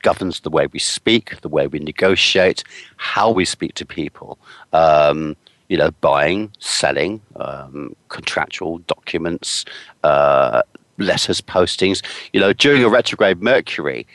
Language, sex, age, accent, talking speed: English, male, 50-69, British, 130 wpm